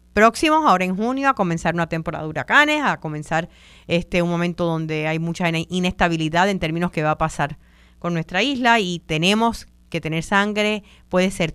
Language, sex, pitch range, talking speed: Spanish, female, 165-210 Hz, 180 wpm